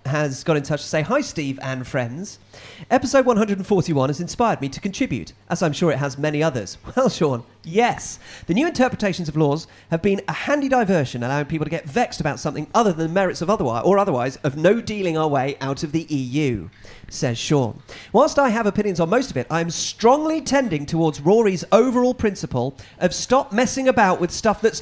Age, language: 40-59, English